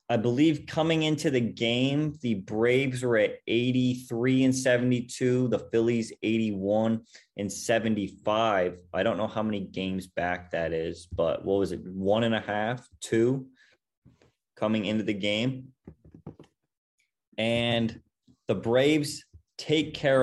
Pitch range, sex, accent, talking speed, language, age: 110-135 Hz, male, American, 135 wpm, English, 20-39